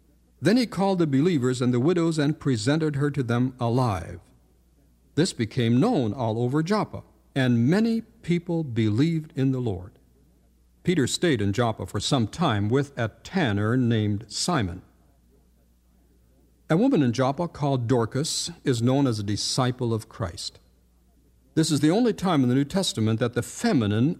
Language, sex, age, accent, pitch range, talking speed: English, male, 60-79, American, 100-150 Hz, 160 wpm